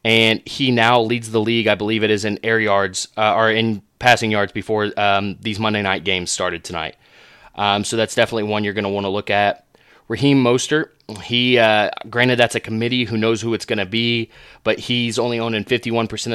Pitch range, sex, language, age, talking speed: 105-120 Hz, male, English, 20-39, 210 wpm